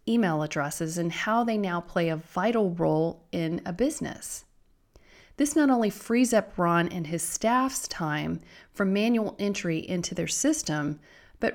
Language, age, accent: English, 30-49, American